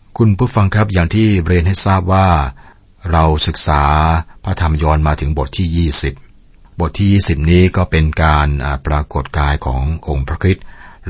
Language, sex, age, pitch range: Thai, male, 60-79, 75-90 Hz